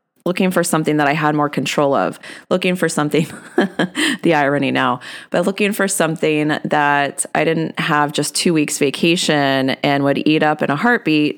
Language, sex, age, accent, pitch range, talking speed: English, female, 20-39, American, 145-175 Hz, 180 wpm